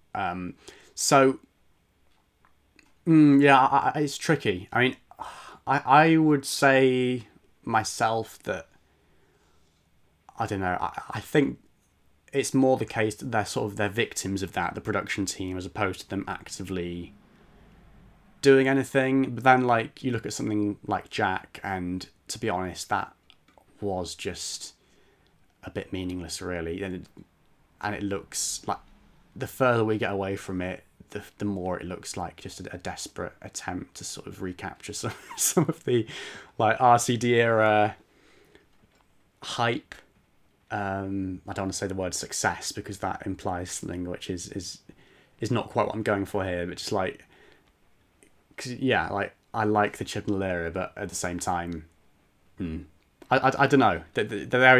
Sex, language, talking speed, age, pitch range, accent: male, English, 165 wpm, 30-49, 90-120 Hz, British